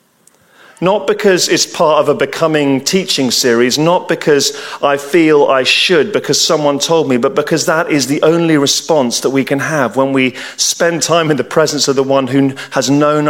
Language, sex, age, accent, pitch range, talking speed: English, male, 40-59, British, 130-165 Hz, 195 wpm